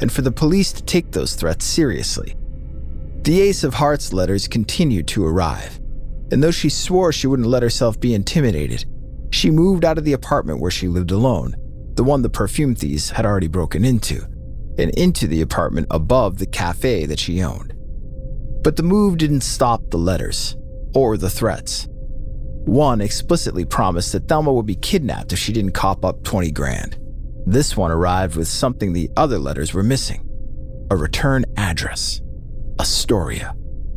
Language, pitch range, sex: English, 80-125 Hz, male